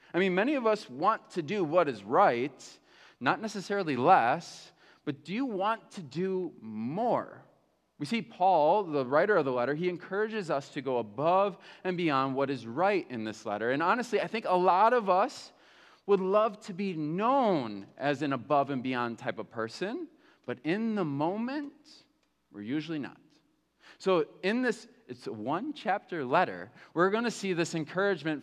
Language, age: English, 30-49